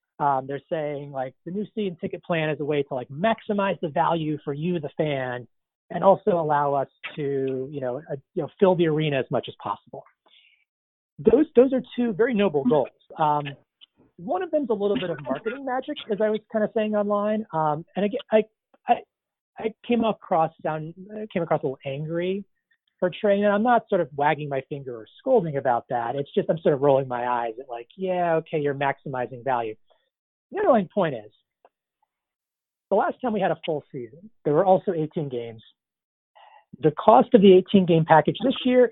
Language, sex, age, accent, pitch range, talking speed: English, male, 30-49, American, 145-215 Hz, 205 wpm